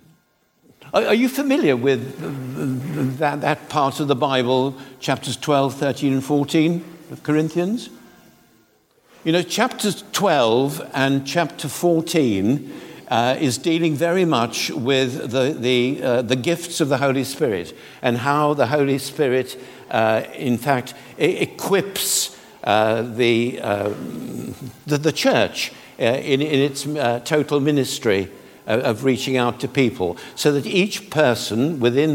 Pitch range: 125-155 Hz